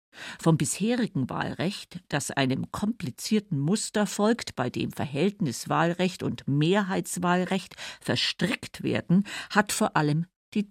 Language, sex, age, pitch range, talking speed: German, female, 50-69, 150-200 Hz, 105 wpm